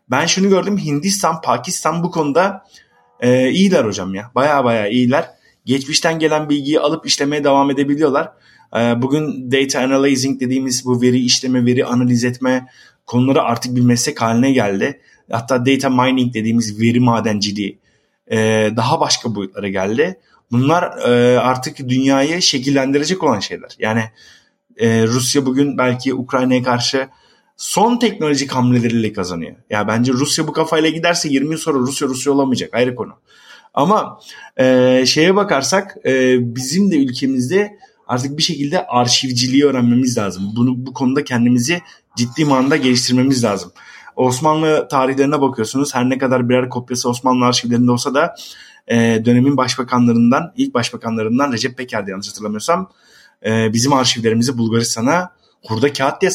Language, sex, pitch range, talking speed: Turkish, male, 120-145 Hz, 140 wpm